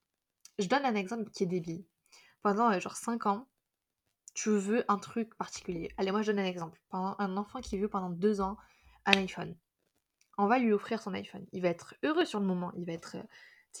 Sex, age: female, 20-39